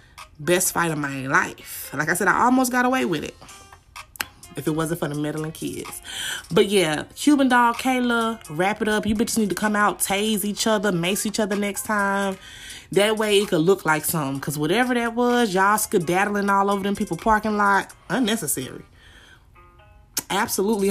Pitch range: 155-215 Hz